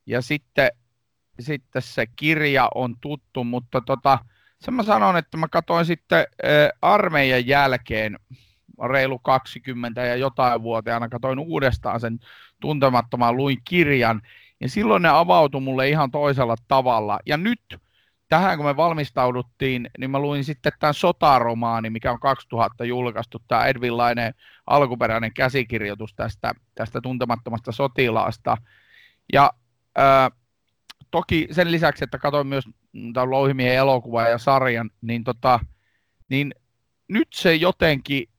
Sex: male